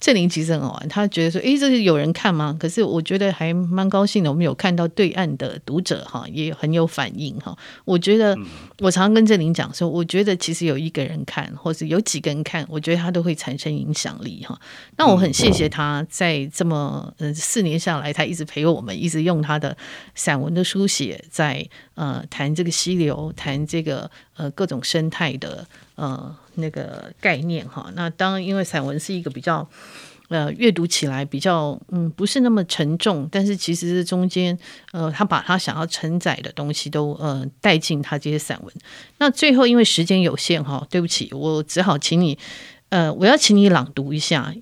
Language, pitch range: Chinese, 150-185 Hz